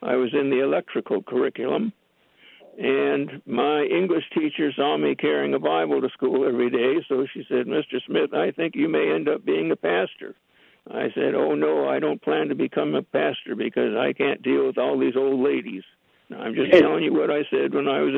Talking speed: 210 wpm